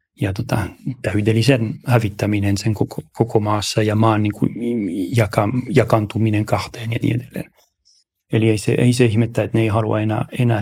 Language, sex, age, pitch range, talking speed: Finnish, male, 40-59, 110-130 Hz, 165 wpm